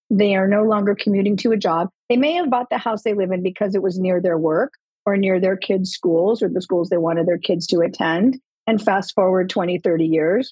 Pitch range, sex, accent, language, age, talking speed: 190-255 Hz, female, American, English, 50-69, 245 wpm